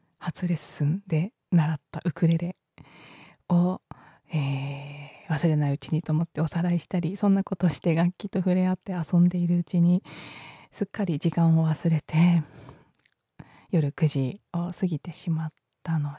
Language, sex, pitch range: Japanese, female, 155-195 Hz